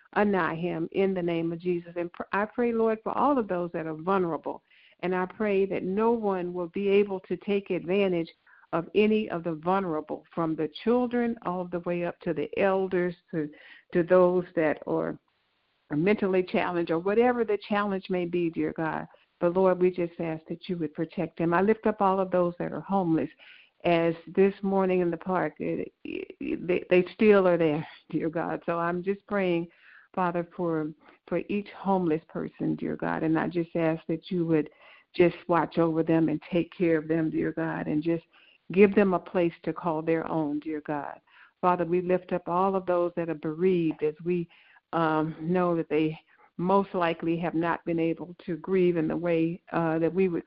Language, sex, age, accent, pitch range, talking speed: English, female, 60-79, American, 165-190 Hz, 195 wpm